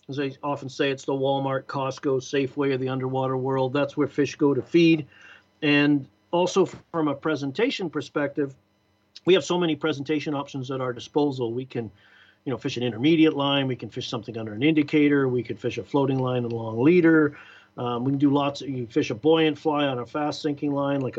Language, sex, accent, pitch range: English, male, American, 130-165 Hz